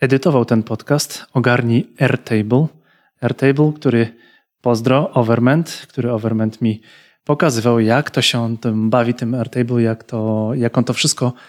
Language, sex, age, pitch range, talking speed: Polish, male, 30-49, 115-140 Hz, 140 wpm